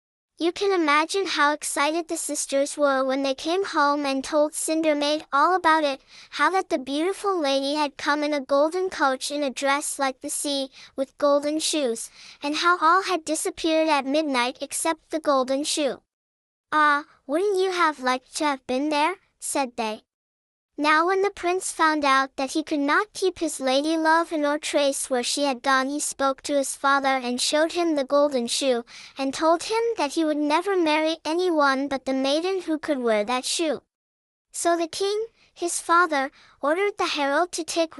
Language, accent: English, American